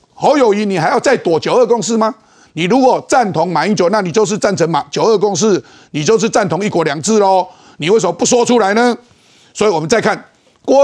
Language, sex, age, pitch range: Chinese, male, 50-69, 165-225 Hz